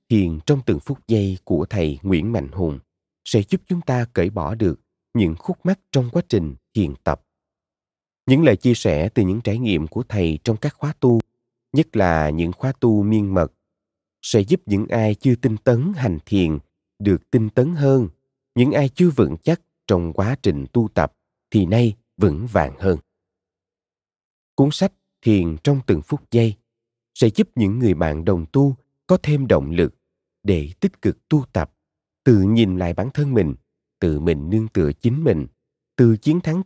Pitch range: 95-140 Hz